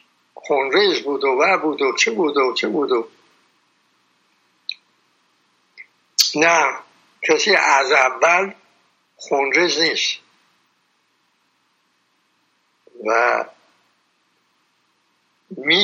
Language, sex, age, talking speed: Persian, male, 60-79, 65 wpm